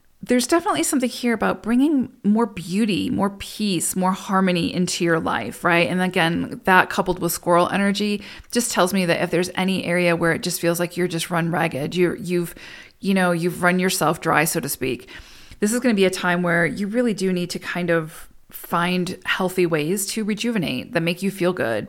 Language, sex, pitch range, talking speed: English, female, 170-200 Hz, 205 wpm